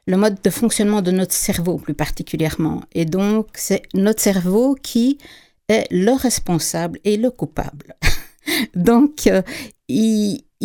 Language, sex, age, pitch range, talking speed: French, female, 60-79, 180-245 Hz, 130 wpm